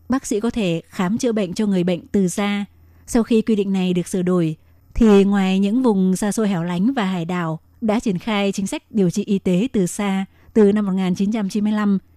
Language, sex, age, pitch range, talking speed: Vietnamese, female, 20-39, 185-220 Hz, 220 wpm